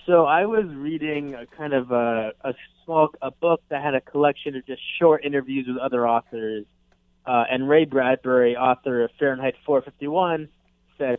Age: 20-39